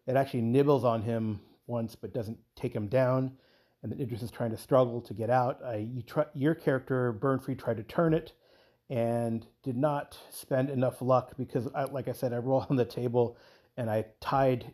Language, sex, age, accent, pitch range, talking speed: English, male, 30-49, American, 110-130 Hz, 205 wpm